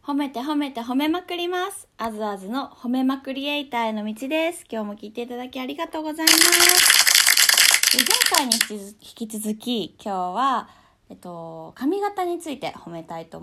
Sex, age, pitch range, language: female, 20-39, 170-280 Hz, Japanese